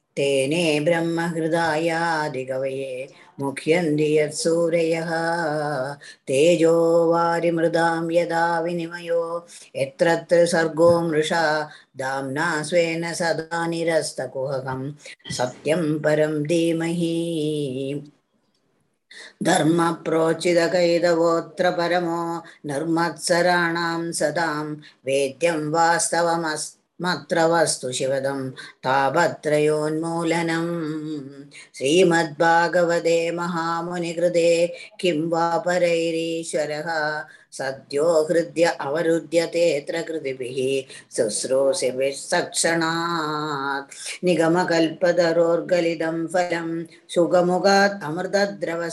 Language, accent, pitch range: Tamil, native, 150-170 Hz